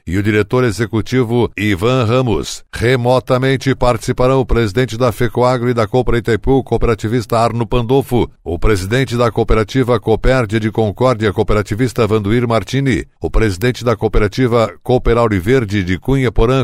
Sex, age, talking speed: male, 60-79, 135 wpm